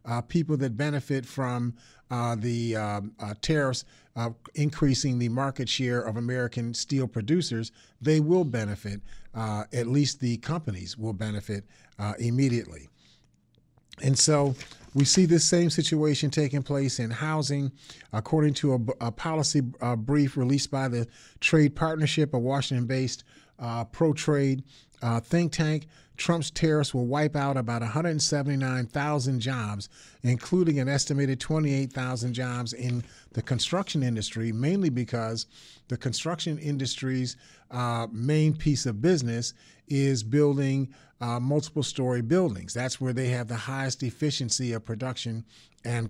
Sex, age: male, 40-59